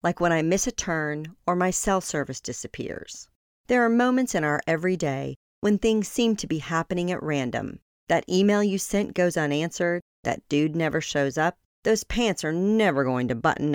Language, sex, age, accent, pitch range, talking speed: English, female, 40-59, American, 150-210 Hz, 190 wpm